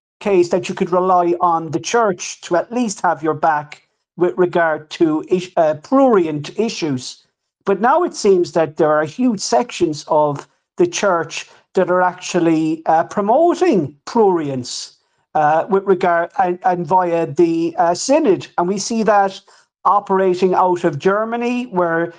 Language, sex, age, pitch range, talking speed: English, male, 40-59, 170-210 Hz, 150 wpm